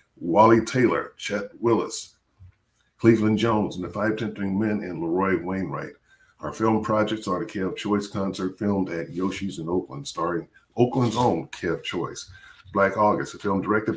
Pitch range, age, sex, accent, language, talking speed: 95-110 Hz, 50-69, male, American, English, 160 wpm